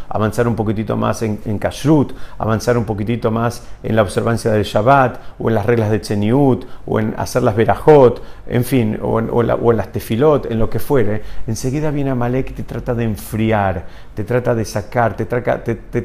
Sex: male